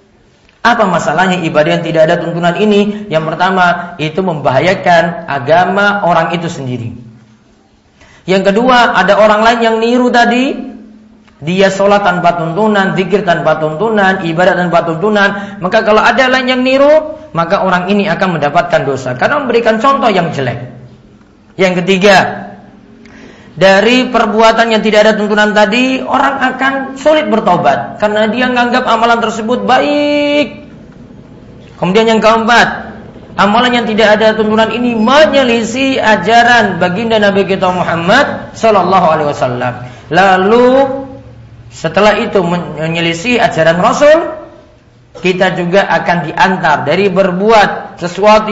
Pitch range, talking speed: 175-230 Hz, 125 wpm